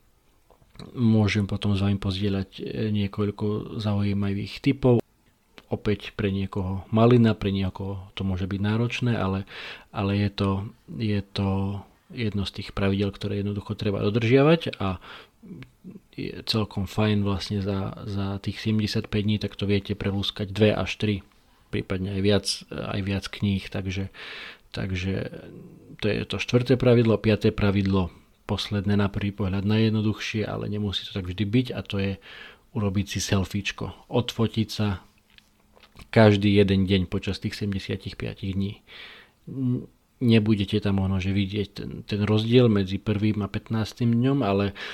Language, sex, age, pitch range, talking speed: Slovak, male, 40-59, 100-110 Hz, 140 wpm